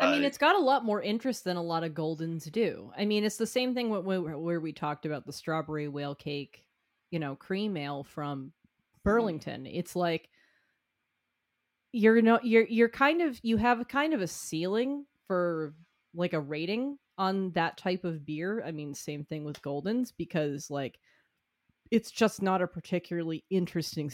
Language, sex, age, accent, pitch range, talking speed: English, female, 30-49, American, 155-200 Hz, 175 wpm